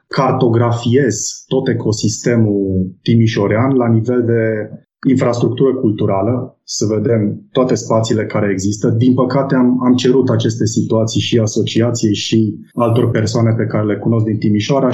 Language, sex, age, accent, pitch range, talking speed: Romanian, male, 20-39, native, 105-120 Hz, 135 wpm